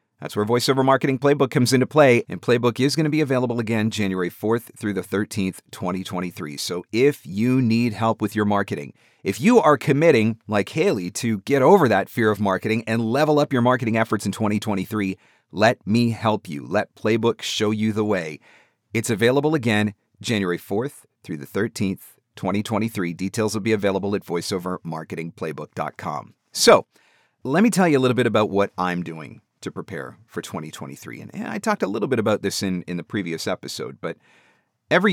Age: 40-59